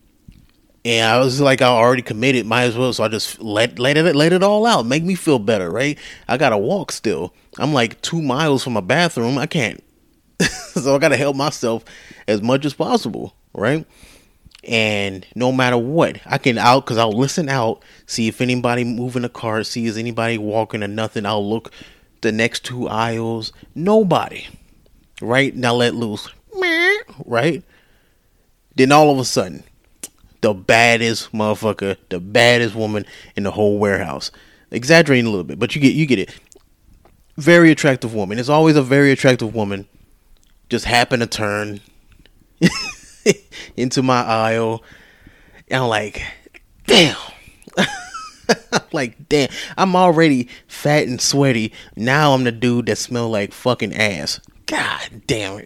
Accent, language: American, English